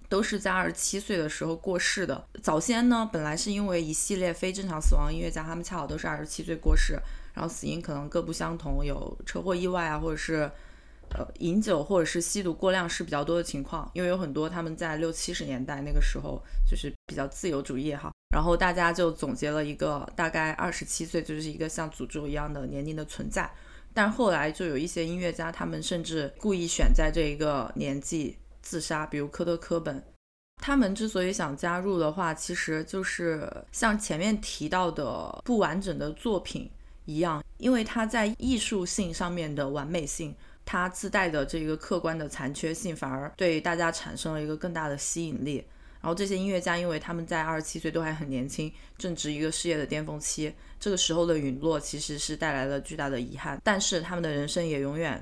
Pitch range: 150-180 Hz